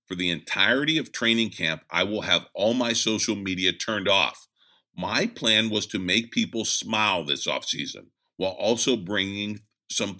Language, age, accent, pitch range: English, 50-69, American, 90-115 Hz